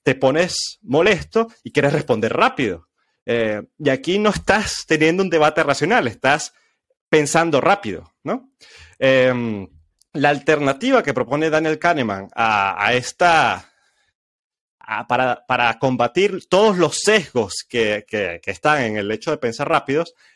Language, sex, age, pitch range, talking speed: Spanish, male, 30-49, 115-155 Hz, 140 wpm